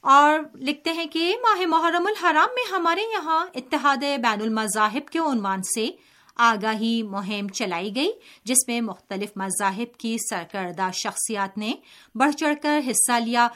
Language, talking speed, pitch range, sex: Urdu, 145 wpm, 200-300 Hz, female